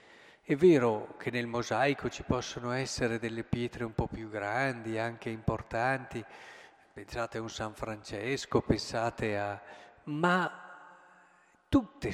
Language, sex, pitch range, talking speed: Italian, male, 115-165 Hz, 125 wpm